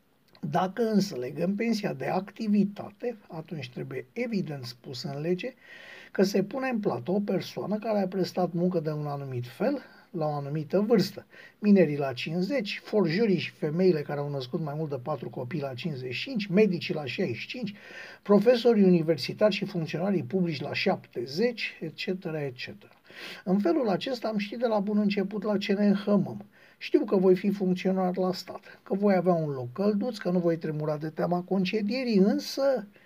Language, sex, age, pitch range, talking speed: Romanian, male, 50-69, 155-210 Hz, 165 wpm